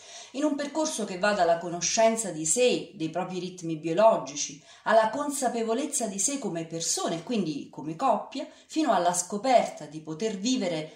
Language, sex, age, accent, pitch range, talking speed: Italian, female, 40-59, native, 165-240 Hz, 155 wpm